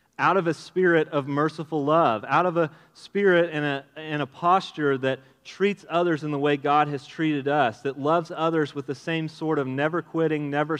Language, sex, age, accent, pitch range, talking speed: English, male, 30-49, American, 140-175 Hz, 205 wpm